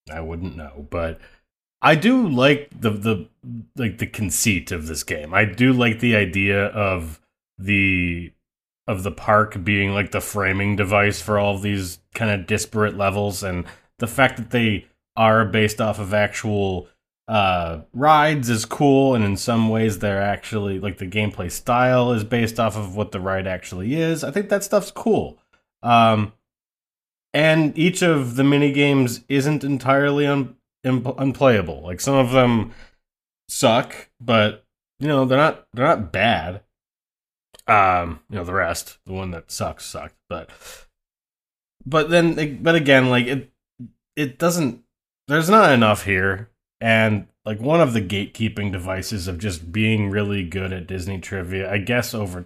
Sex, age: male, 30-49